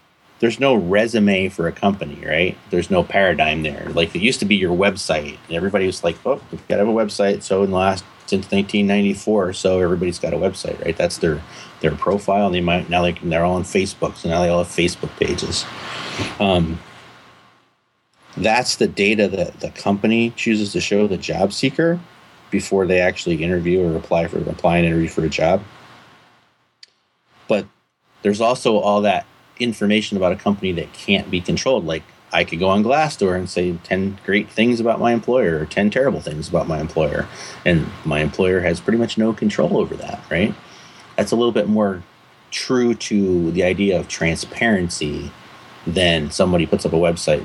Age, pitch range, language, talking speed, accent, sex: 30-49, 90-110 Hz, English, 190 wpm, American, male